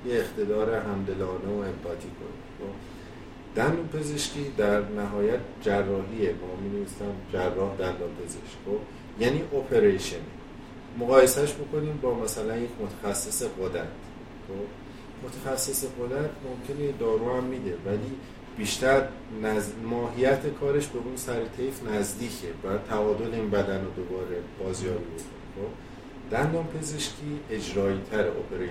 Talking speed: 105 wpm